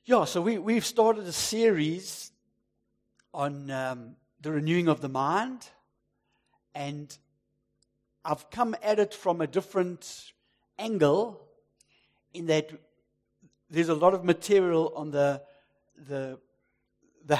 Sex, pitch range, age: male, 130-175 Hz, 60-79